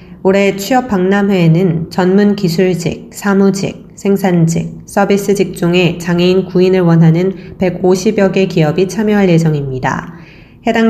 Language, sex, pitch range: Korean, female, 170-205 Hz